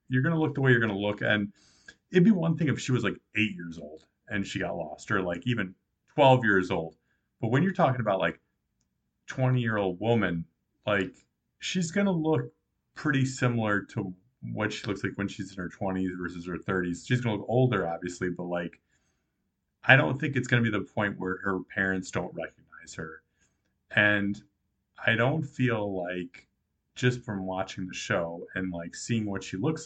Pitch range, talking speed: 90-125 Hz, 205 wpm